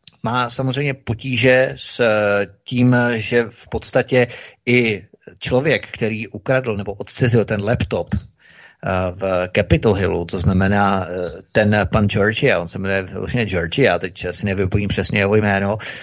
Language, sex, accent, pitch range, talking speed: Czech, male, native, 100-115 Hz, 135 wpm